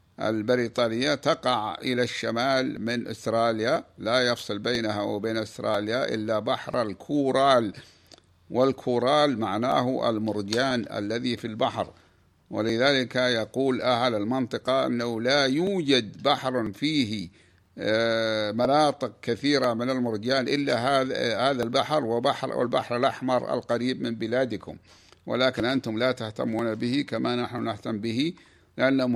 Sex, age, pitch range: male, 60-79, 115-130 Hz